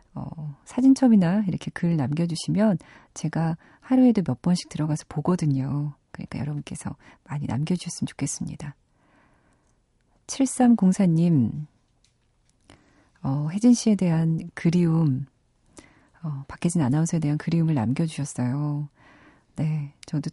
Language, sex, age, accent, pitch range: Korean, female, 40-59, native, 150-190 Hz